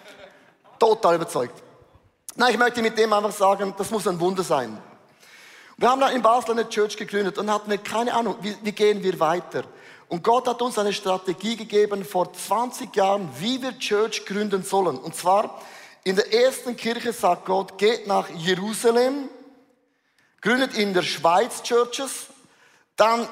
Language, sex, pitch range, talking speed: German, male, 190-235 Hz, 155 wpm